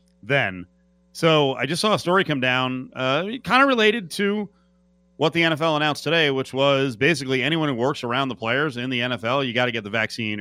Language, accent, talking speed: English, American, 215 wpm